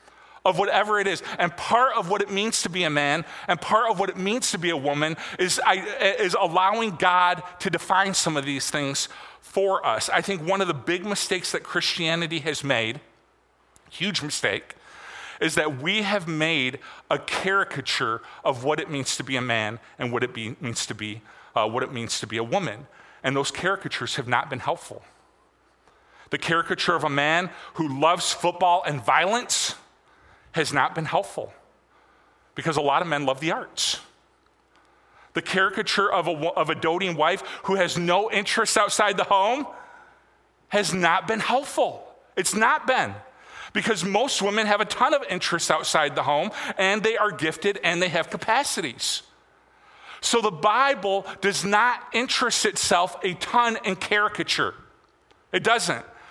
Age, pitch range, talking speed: 40-59, 155-210 Hz, 165 wpm